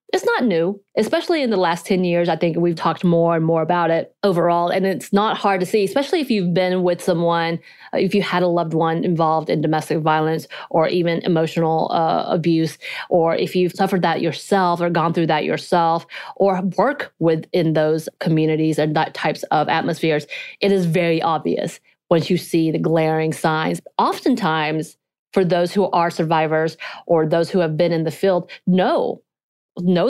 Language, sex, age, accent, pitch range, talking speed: English, female, 30-49, American, 160-185 Hz, 185 wpm